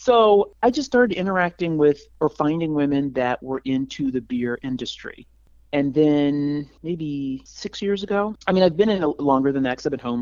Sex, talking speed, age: male, 195 wpm, 30-49